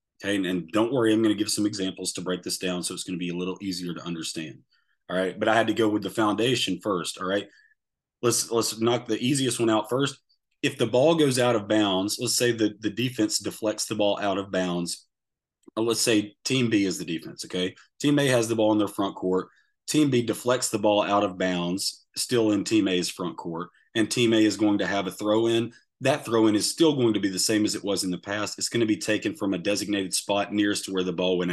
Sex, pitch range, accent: male, 95-120 Hz, American